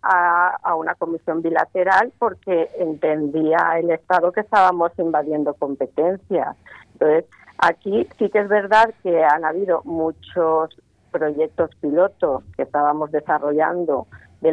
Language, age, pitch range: Spanish, 40-59, 150-180 Hz